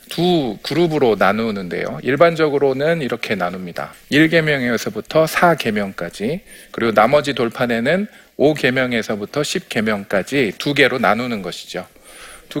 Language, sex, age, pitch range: Korean, male, 40-59, 115-165 Hz